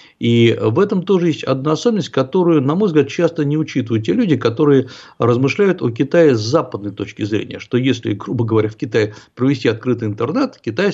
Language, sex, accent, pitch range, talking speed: Russian, male, native, 115-160 Hz, 185 wpm